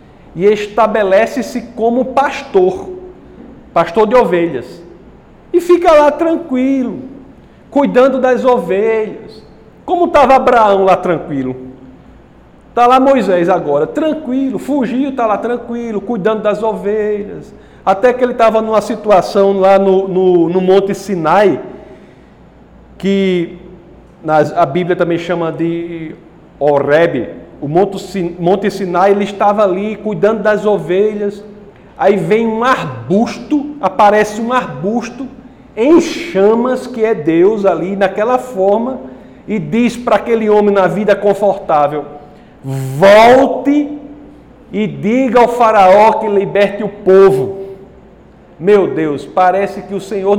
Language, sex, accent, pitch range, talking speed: Portuguese, male, Brazilian, 185-245 Hz, 115 wpm